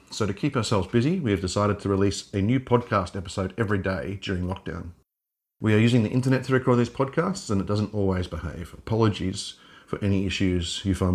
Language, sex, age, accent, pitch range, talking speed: English, male, 30-49, Australian, 95-115 Hz, 205 wpm